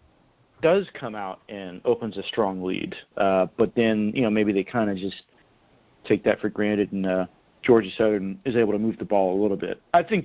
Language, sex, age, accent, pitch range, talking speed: English, male, 40-59, American, 105-140 Hz, 215 wpm